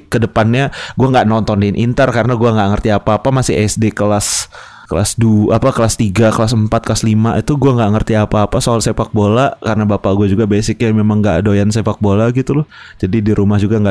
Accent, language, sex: native, Indonesian, male